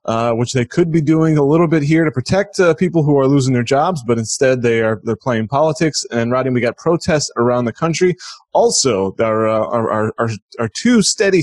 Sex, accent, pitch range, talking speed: male, American, 115-160 Hz, 225 wpm